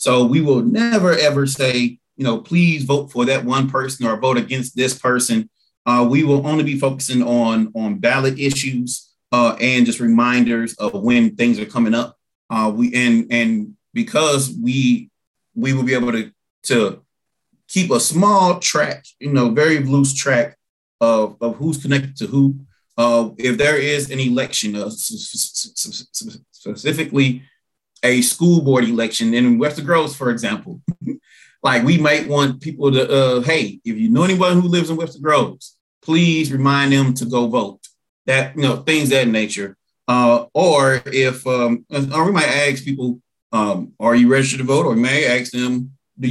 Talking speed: 175 wpm